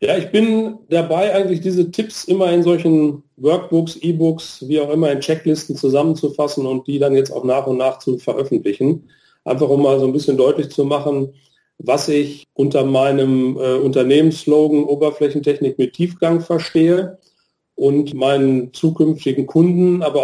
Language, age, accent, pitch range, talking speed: German, 40-59, German, 140-165 Hz, 155 wpm